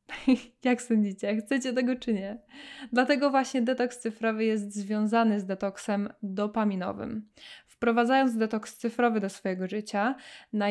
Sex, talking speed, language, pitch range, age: female, 125 wpm, Polish, 205-240 Hz, 10-29